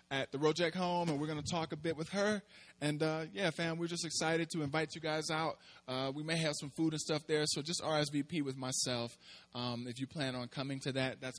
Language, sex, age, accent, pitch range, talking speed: English, male, 20-39, American, 120-150 Hz, 250 wpm